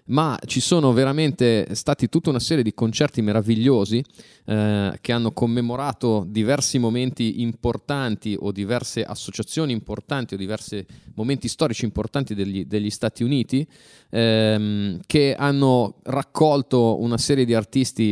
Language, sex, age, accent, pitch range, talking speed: Italian, male, 30-49, native, 110-130 Hz, 130 wpm